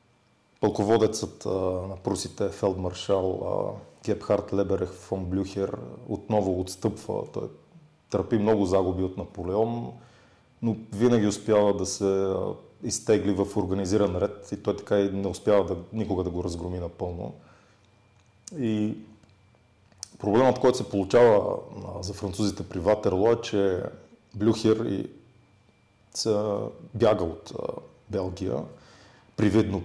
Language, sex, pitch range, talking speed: Bulgarian, male, 95-110 Hz, 110 wpm